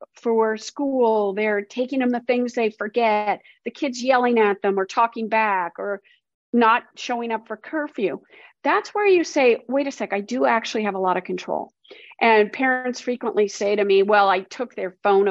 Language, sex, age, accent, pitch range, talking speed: English, female, 40-59, American, 210-280 Hz, 190 wpm